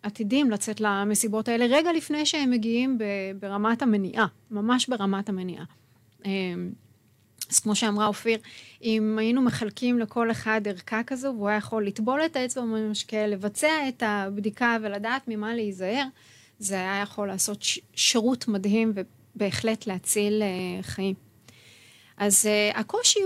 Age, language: 30-49, Hebrew